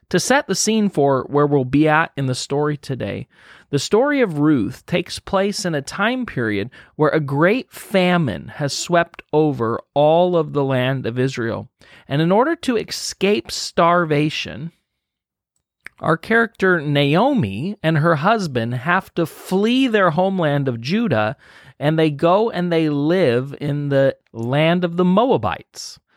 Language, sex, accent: English, male, American